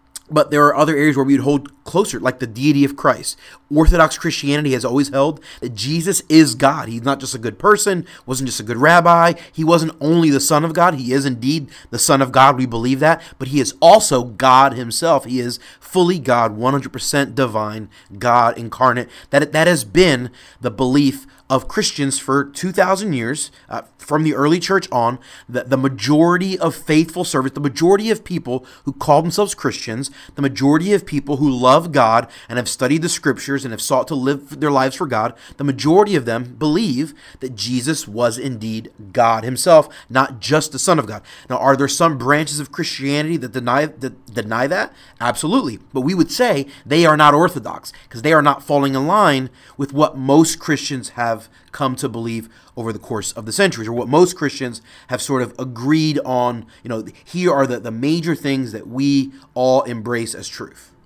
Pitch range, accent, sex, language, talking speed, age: 125-155 Hz, American, male, English, 195 wpm, 30-49